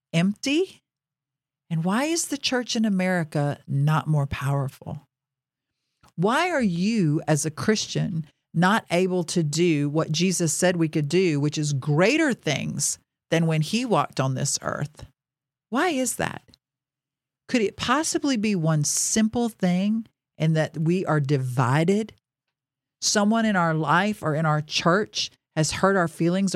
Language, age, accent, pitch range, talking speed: English, 50-69, American, 140-205 Hz, 145 wpm